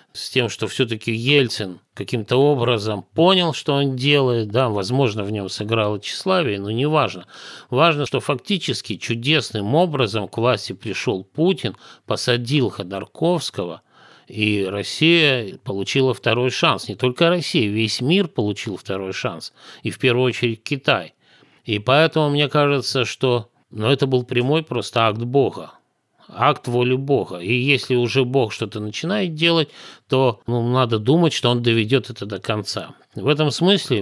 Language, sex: Russian, male